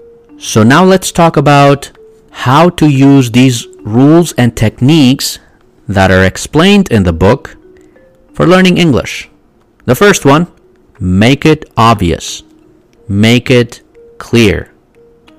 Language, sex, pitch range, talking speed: English, male, 95-130 Hz, 115 wpm